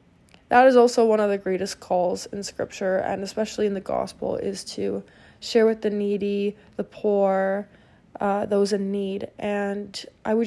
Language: English